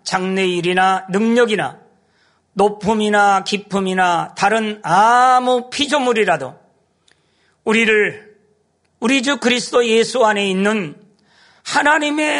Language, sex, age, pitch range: Korean, male, 40-59, 195-235 Hz